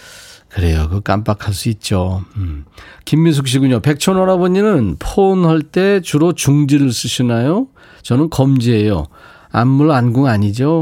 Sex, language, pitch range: male, Korean, 105-155 Hz